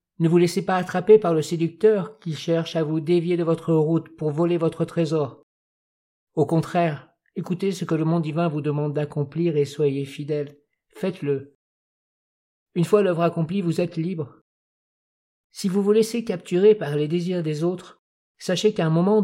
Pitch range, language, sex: 155-180 Hz, French, male